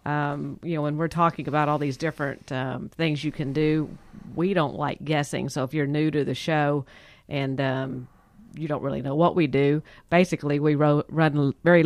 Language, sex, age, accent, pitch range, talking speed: English, female, 50-69, American, 135-155 Hz, 195 wpm